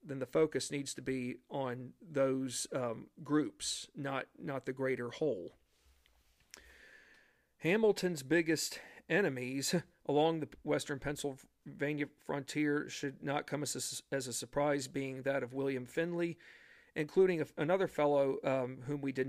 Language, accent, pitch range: English, American, 130-150 Hz